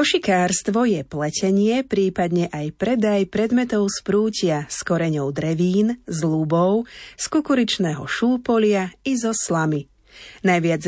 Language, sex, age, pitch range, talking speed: Slovak, female, 30-49, 170-215 Hz, 120 wpm